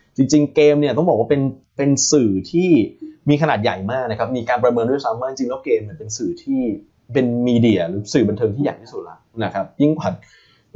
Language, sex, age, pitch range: Thai, male, 20-39, 100-140 Hz